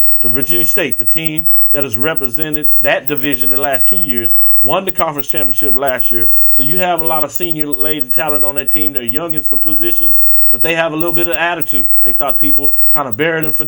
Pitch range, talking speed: 130-165 Hz, 230 wpm